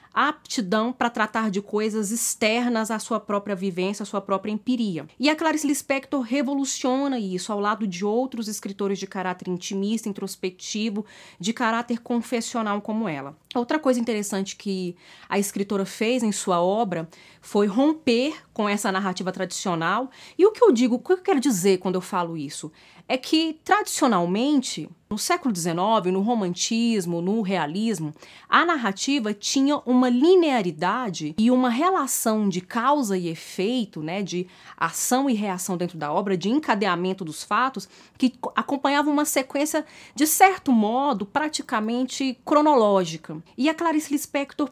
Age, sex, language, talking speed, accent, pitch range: 30-49, female, Portuguese, 150 wpm, Brazilian, 190-255 Hz